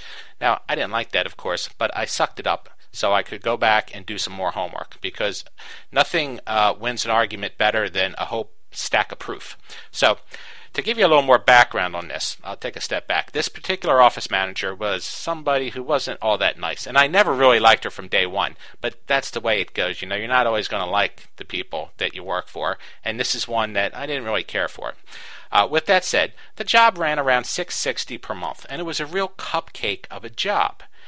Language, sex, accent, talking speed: English, male, American, 230 wpm